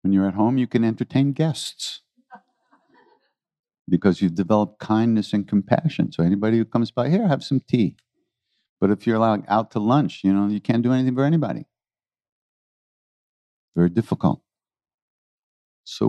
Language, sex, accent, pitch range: English, male, American, 95-145 Hz